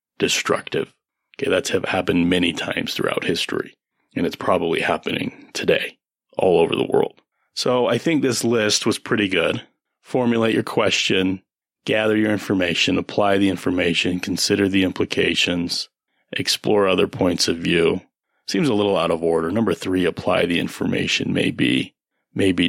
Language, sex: English, male